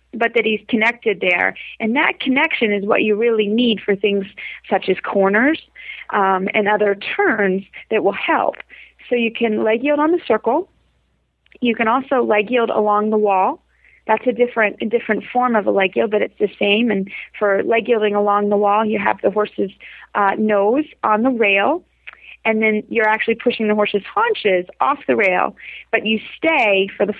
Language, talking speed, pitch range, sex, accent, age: English, 190 wpm, 195-235 Hz, female, American, 30-49